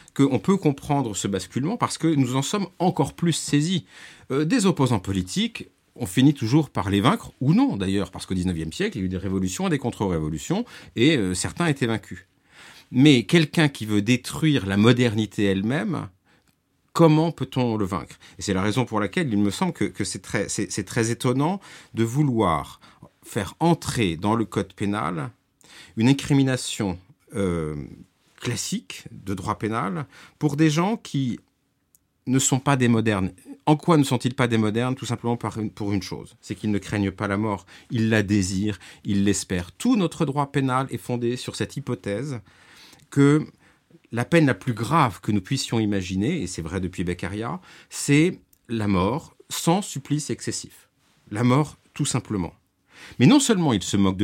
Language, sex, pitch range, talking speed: French, male, 100-145 Hz, 175 wpm